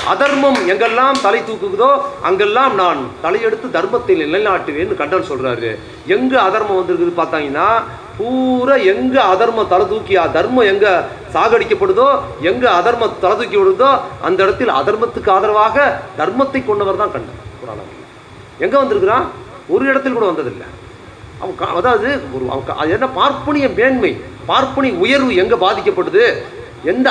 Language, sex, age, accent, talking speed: Tamil, male, 30-49, native, 115 wpm